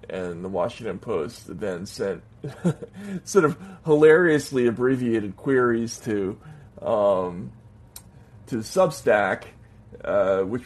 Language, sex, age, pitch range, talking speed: English, male, 40-59, 105-145 Hz, 95 wpm